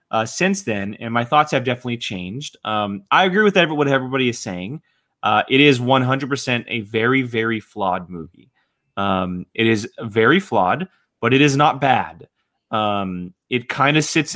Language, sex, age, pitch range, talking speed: English, male, 20-39, 120-155 Hz, 175 wpm